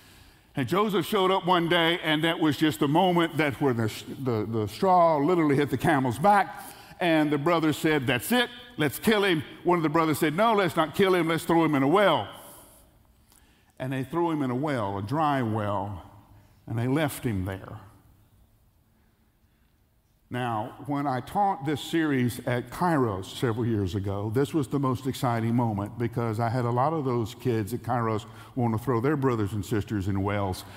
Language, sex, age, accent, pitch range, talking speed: English, male, 50-69, American, 105-160 Hz, 190 wpm